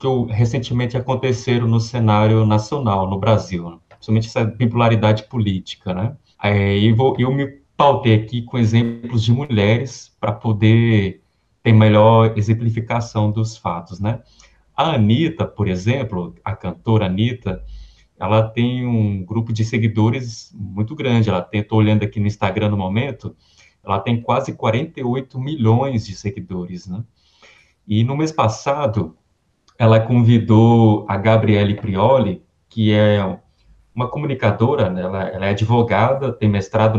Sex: male